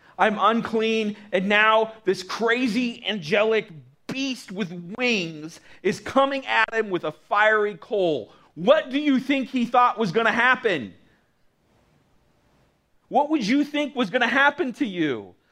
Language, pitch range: English, 165-245 Hz